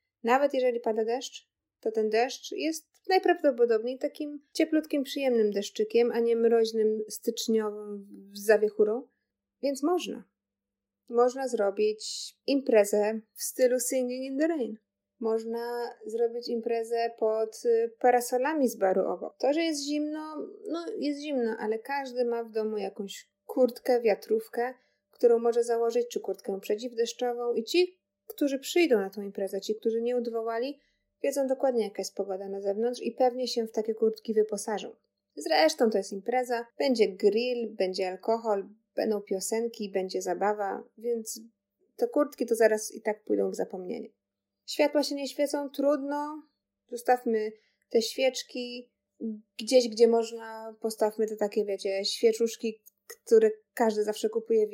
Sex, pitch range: female, 215-255 Hz